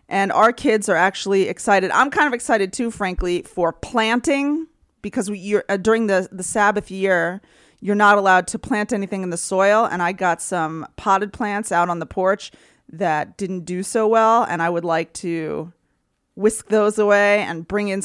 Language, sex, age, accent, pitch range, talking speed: English, female, 30-49, American, 185-225 Hz, 195 wpm